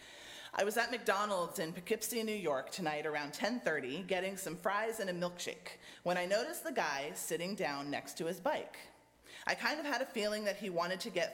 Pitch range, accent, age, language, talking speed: 150-210 Hz, American, 30-49, English, 205 wpm